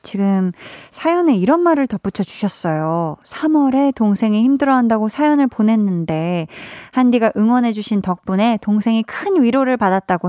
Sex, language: female, Korean